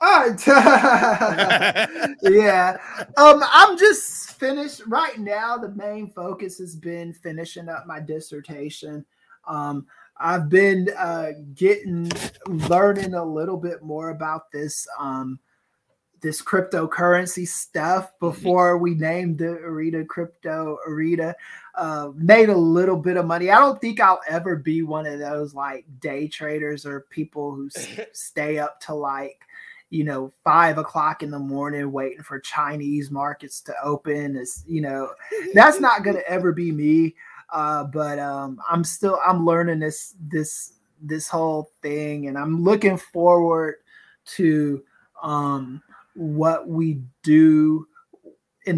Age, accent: 20-39, American